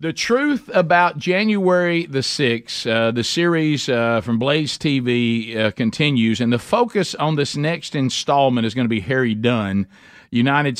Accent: American